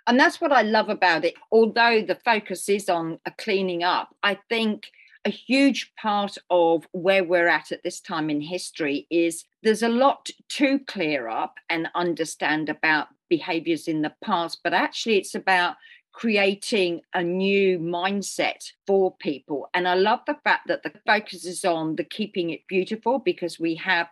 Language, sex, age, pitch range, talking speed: English, female, 50-69, 170-220 Hz, 175 wpm